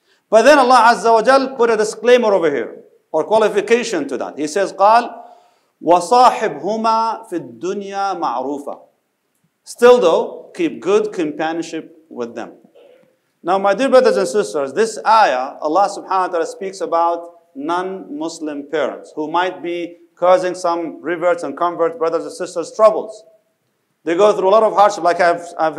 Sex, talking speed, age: male, 155 wpm, 40-59